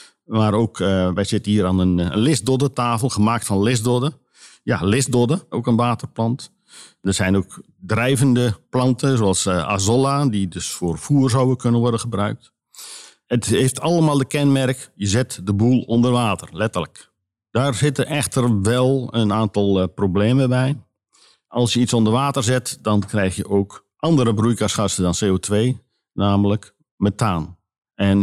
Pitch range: 100-125 Hz